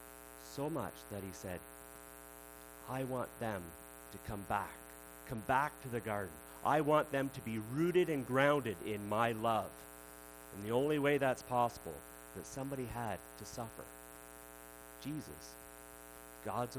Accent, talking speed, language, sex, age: American, 145 wpm, English, male, 40-59